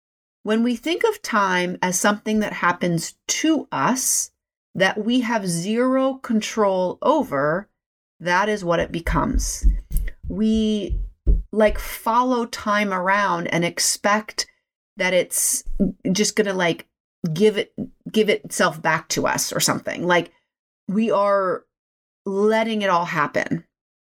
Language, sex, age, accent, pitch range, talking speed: English, female, 30-49, American, 175-240 Hz, 125 wpm